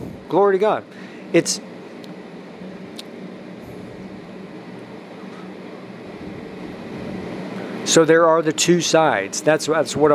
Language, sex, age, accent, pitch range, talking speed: English, male, 50-69, American, 140-160 Hz, 75 wpm